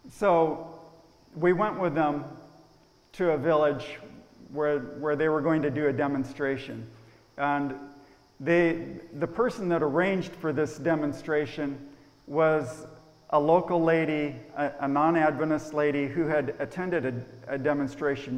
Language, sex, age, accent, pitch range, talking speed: English, male, 50-69, American, 135-160 Hz, 130 wpm